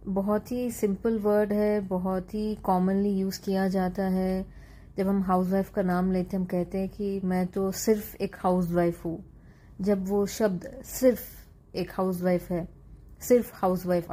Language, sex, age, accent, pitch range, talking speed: Hindi, female, 30-49, native, 180-205 Hz, 160 wpm